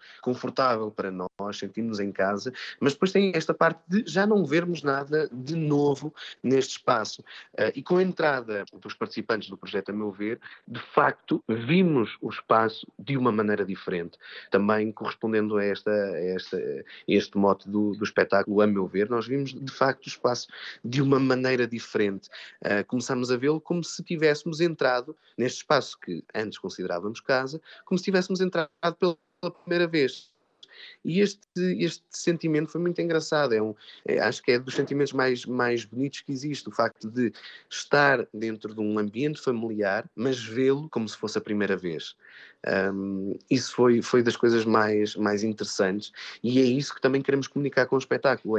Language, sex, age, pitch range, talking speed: Portuguese, male, 20-39, 110-160 Hz, 175 wpm